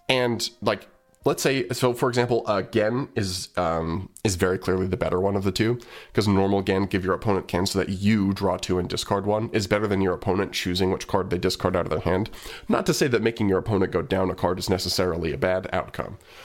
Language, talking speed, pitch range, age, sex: English, 235 wpm, 95-115 Hz, 20-39, male